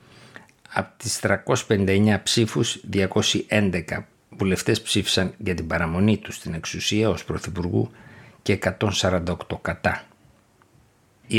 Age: 60-79